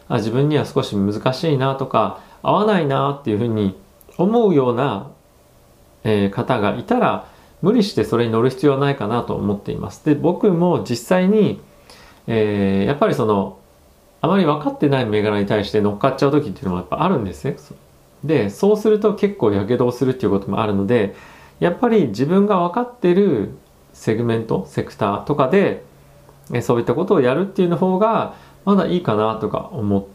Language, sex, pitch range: Japanese, male, 105-165 Hz